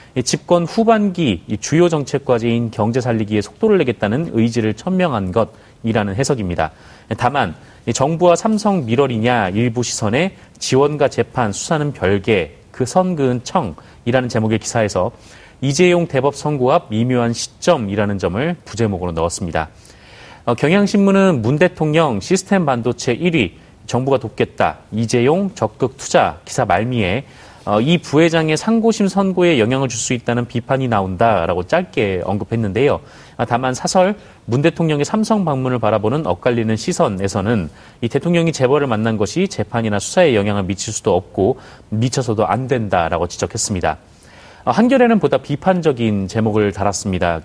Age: 30-49